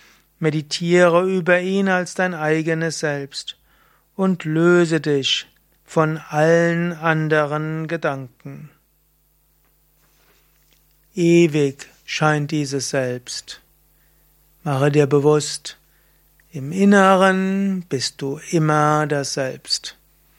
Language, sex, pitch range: German, male, 145-185 Hz